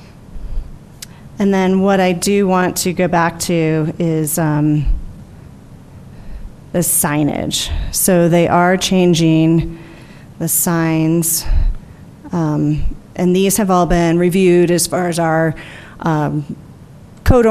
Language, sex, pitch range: English, female, 160-180 Hz